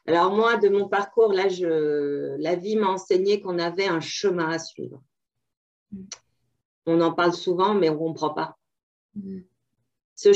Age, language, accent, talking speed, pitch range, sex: 40-59, French, French, 155 wpm, 160-210 Hz, female